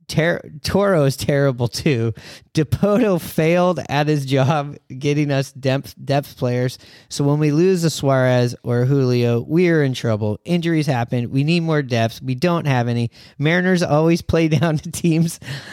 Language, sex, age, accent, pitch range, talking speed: English, male, 30-49, American, 120-150 Hz, 160 wpm